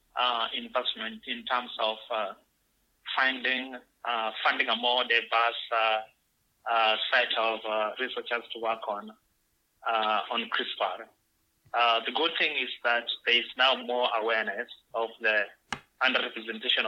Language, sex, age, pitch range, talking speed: English, male, 30-49, 110-120 Hz, 135 wpm